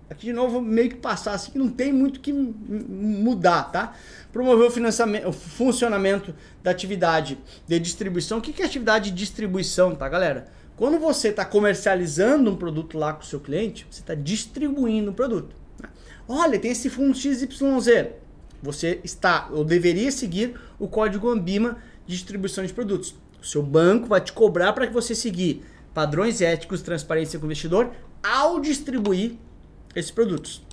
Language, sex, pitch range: Portuguese, male, 175-240 Hz